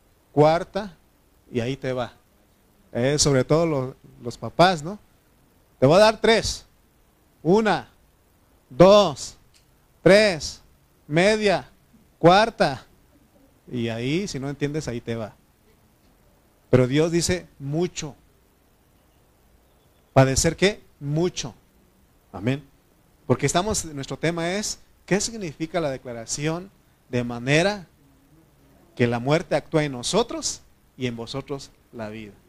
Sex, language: male, Spanish